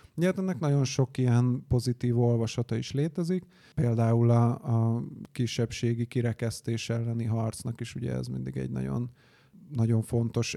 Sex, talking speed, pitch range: male, 125 wpm, 115-130 Hz